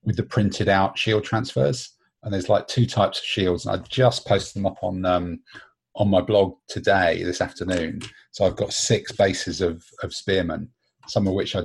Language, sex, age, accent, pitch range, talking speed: English, male, 40-59, British, 95-110 Hz, 200 wpm